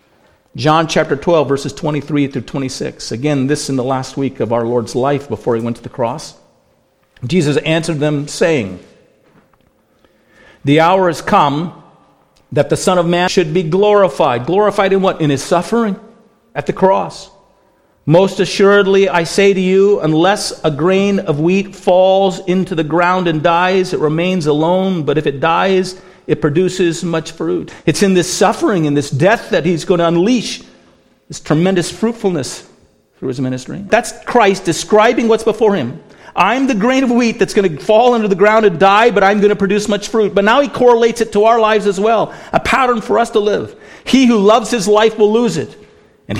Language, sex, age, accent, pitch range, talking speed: English, male, 50-69, American, 160-210 Hz, 190 wpm